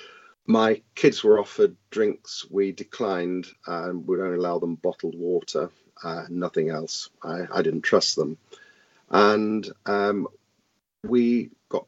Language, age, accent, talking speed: English, 40-59, British, 130 wpm